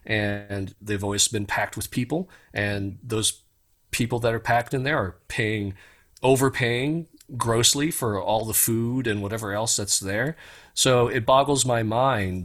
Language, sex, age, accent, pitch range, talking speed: English, male, 40-59, American, 90-115 Hz, 160 wpm